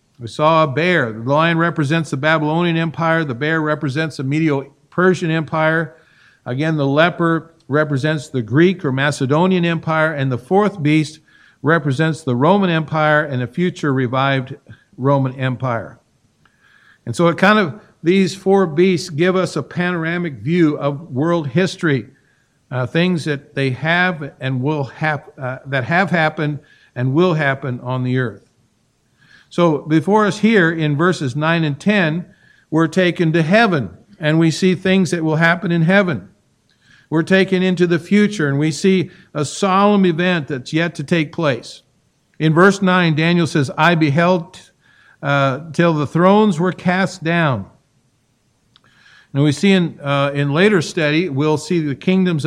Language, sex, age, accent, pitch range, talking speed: English, male, 50-69, American, 140-175 Hz, 160 wpm